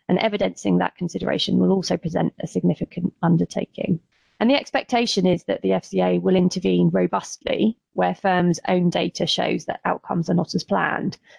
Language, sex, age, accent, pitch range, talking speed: English, female, 20-39, British, 165-205 Hz, 165 wpm